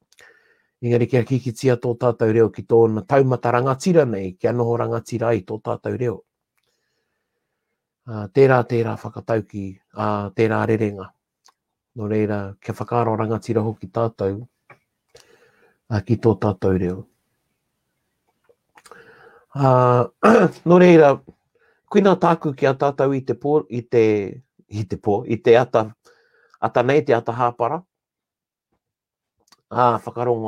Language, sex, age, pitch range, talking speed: English, male, 60-79, 105-125 Hz, 115 wpm